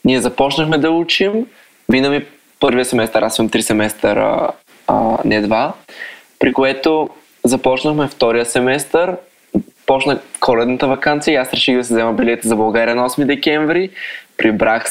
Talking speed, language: 135 wpm, Bulgarian